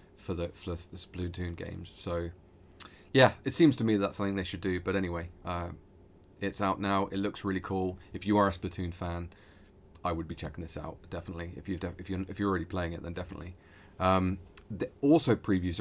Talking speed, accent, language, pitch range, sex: 210 wpm, British, English, 90-100 Hz, male